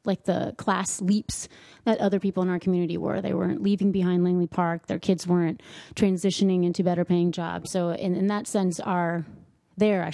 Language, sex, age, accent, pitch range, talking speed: English, female, 30-49, American, 175-235 Hz, 195 wpm